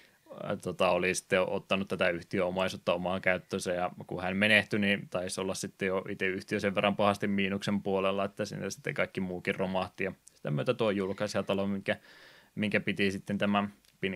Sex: male